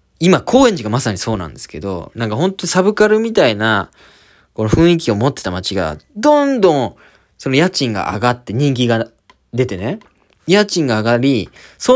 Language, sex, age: Japanese, male, 20-39